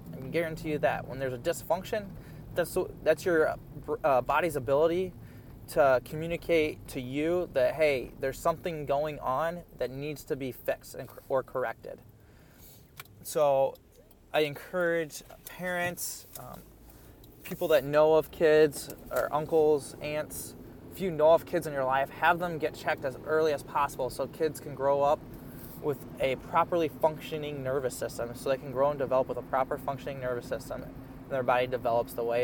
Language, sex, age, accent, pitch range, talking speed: English, male, 20-39, American, 130-155 Hz, 165 wpm